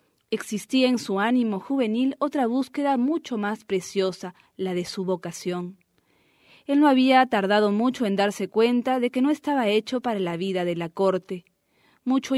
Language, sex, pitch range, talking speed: English, female, 195-250 Hz, 165 wpm